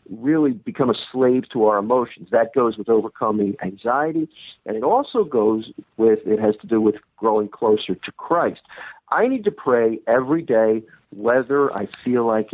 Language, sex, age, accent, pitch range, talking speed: English, male, 50-69, American, 115-180 Hz, 170 wpm